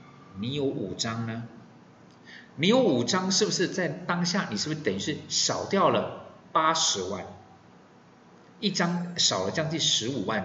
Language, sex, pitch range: Chinese, male, 120-190 Hz